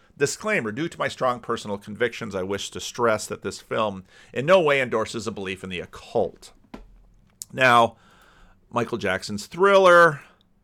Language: English